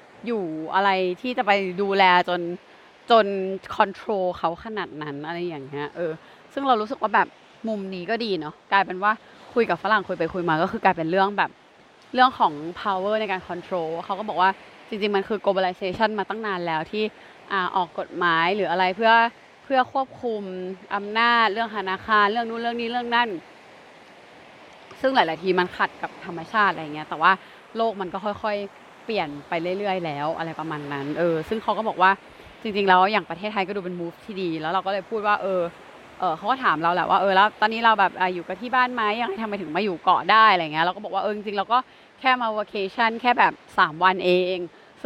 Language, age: Thai, 20-39